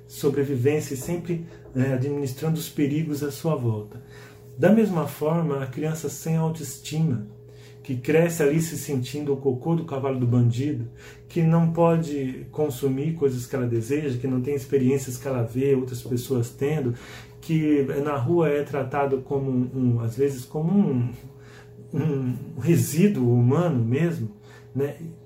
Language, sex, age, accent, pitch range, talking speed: Portuguese, male, 40-59, Brazilian, 125-150 Hz, 150 wpm